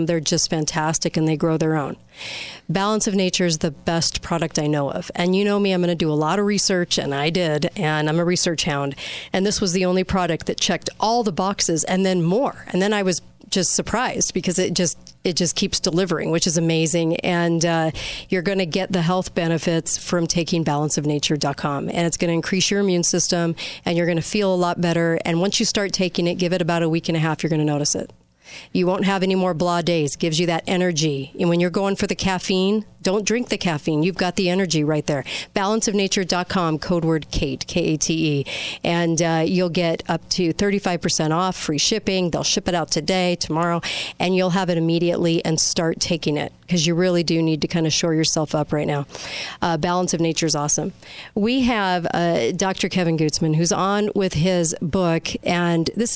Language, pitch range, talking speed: English, 165-190 Hz, 220 wpm